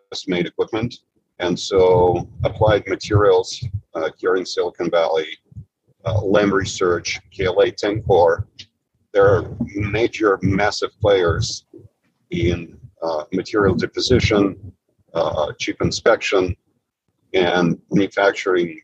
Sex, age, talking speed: male, 50-69, 100 wpm